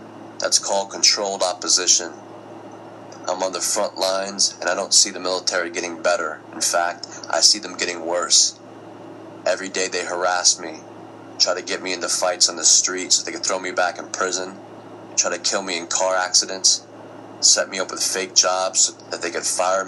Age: 30-49